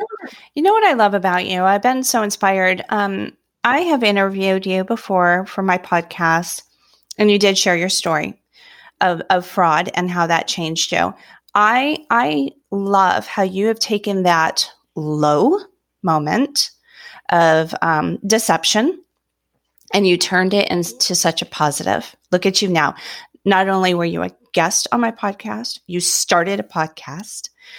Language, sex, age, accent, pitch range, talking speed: English, female, 30-49, American, 175-235 Hz, 155 wpm